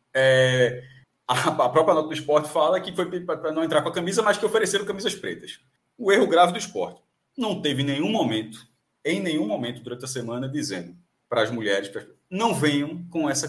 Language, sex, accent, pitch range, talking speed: Portuguese, male, Brazilian, 145-225 Hz, 195 wpm